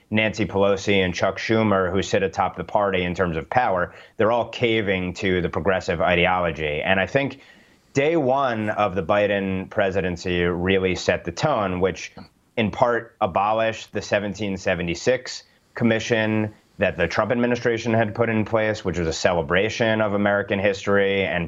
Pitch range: 95-110 Hz